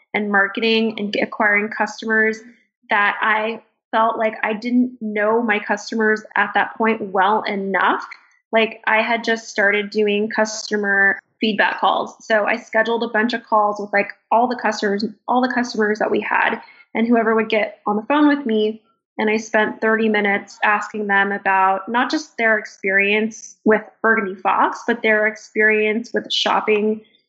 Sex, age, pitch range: female, 10-29, 210-230 Hz